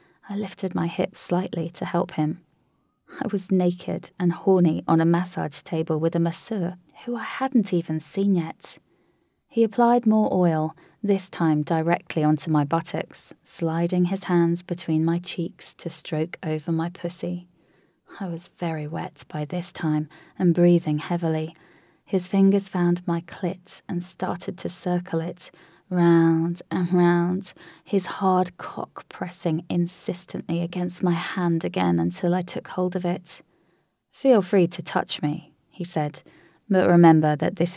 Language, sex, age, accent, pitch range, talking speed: English, female, 20-39, British, 165-185 Hz, 155 wpm